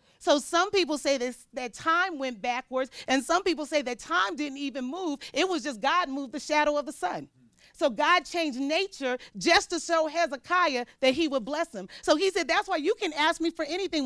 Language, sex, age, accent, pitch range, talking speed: English, female, 40-59, American, 255-325 Hz, 220 wpm